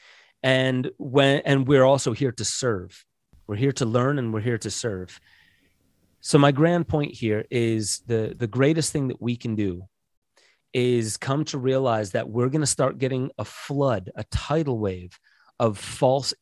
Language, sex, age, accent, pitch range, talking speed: English, male, 30-49, American, 115-145 Hz, 175 wpm